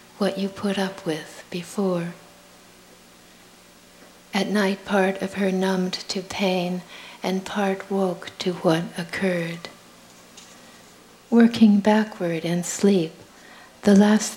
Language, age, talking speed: English, 60-79, 110 wpm